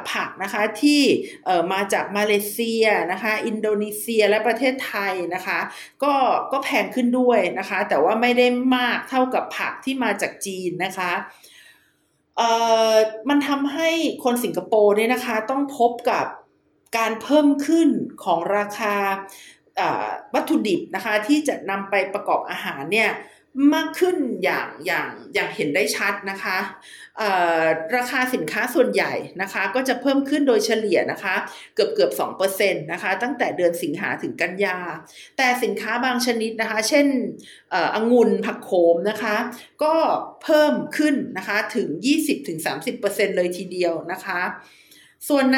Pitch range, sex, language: 200-265 Hz, female, Thai